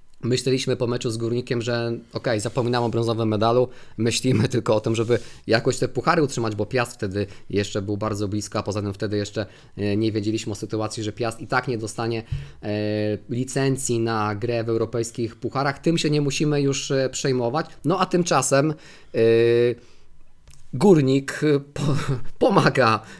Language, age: Polish, 20-39